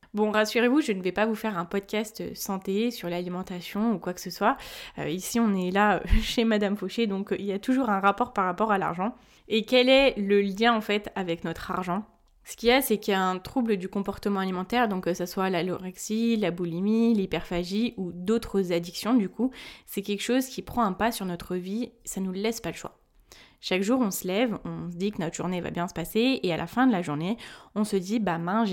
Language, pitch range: French, 180-225 Hz